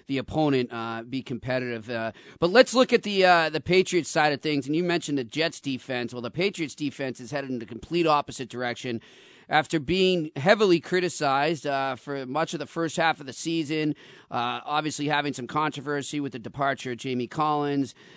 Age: 40-59